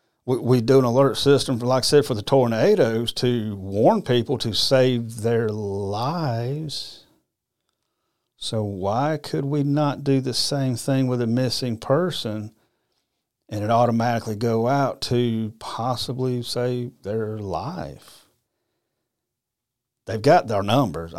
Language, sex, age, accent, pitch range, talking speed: English, male, 40-59, American, 110-130 Hz, 135 wpm